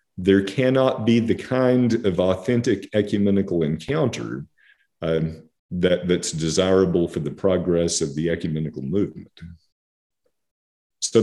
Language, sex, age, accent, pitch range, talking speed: English, male, 50-69, American, 85-110 Hz, 105 wpm